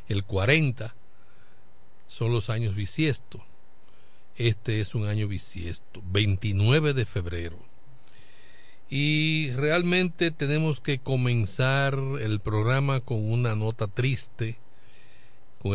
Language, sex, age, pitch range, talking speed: Spanish, male, 50-69, 100-130 Hz, 100 wpm